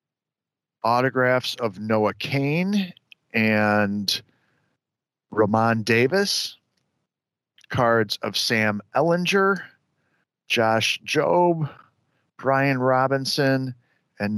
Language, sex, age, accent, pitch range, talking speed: English, male, 40-59, American, 110-135 Hz, 65 wpm